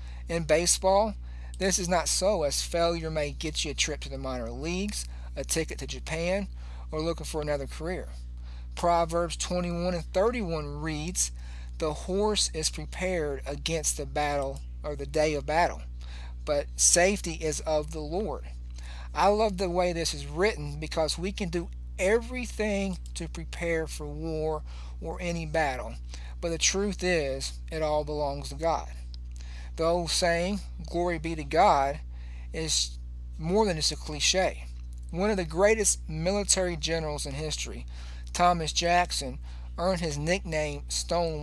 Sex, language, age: male, English, 50-69